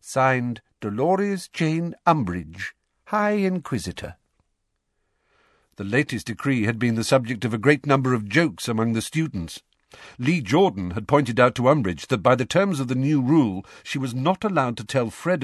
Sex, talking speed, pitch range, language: male, 170 wpm, 105-170 Hz, English